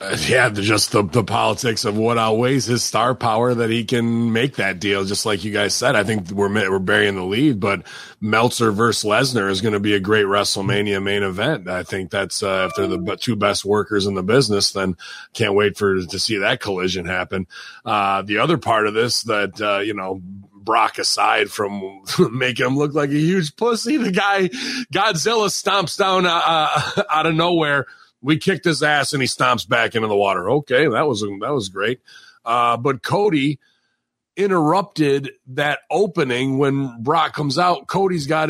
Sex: male